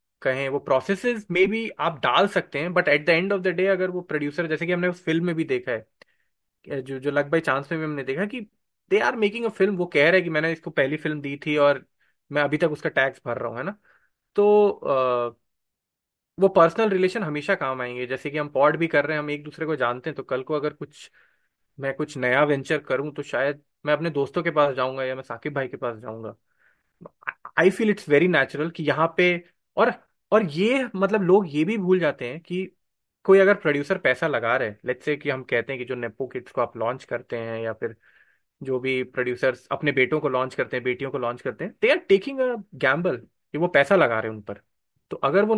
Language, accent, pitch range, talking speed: Hindi, native, 135-190 Hz, 240 wpm